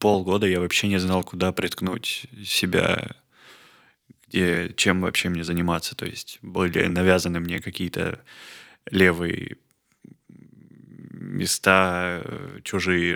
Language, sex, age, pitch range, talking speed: Russian, male, 20-39, 85-95 Hz, 95 wpm